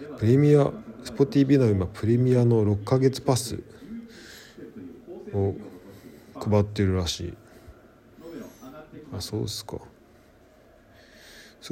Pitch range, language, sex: 100-135 Hz, Japanese, male